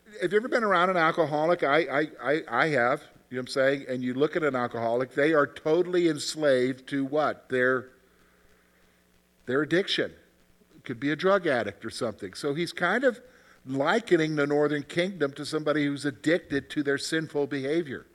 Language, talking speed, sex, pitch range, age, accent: English, 180 wpm, male, 135-180 Hz, 50-69, American